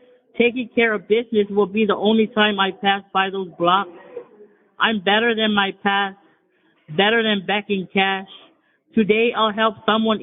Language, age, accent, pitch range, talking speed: English, 50-69, American, 200-230 Hz, 160 wpm